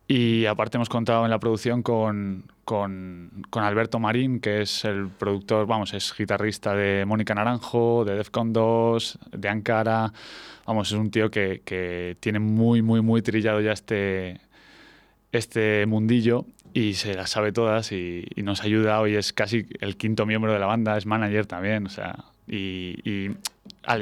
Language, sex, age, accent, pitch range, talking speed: Spanish, male, 20-39, Spanish, 100-120 Hz, 170 wpm